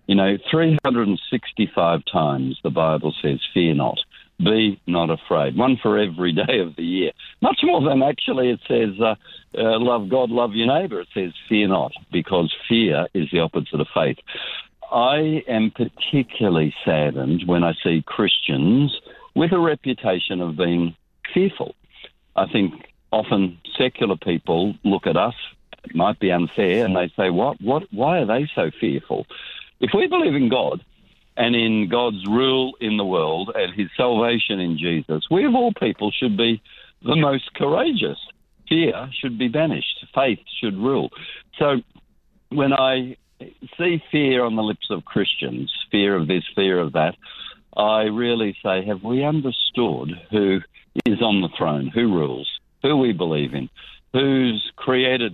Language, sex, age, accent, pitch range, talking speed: English, male, 60-79, Australian, 90-130 Hz, 160 wpm